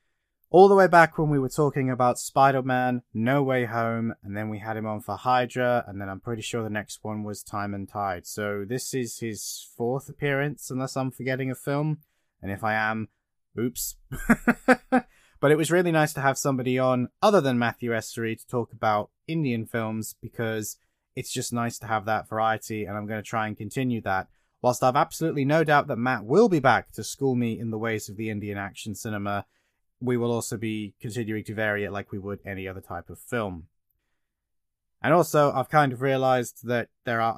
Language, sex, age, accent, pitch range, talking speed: English, male, 20-39, British, 105-130 Hz, 205 wpm